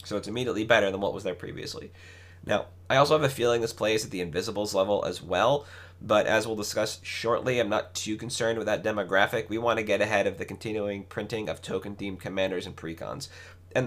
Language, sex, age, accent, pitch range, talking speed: English, male, 30-49, American, 90-110 Hz, 215 wpm